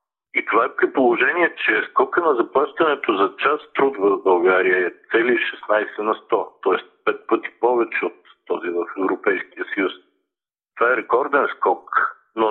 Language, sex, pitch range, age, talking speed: Bulgarian, male, 345-430 Hz, 60-79, 155 wpm